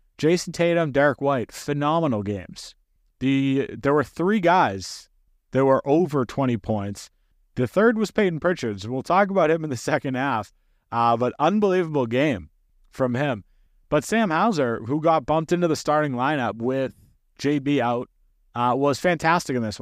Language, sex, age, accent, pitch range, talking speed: English, male, 30-49, American, 115-155 Hz, 160 wpm